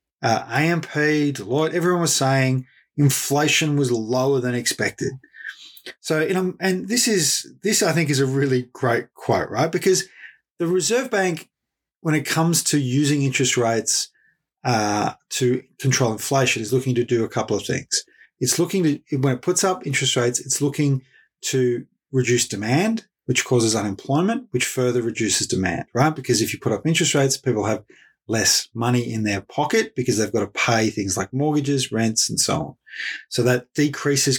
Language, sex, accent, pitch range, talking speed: English, male, Australian, 125-155 Hz, 175 wpm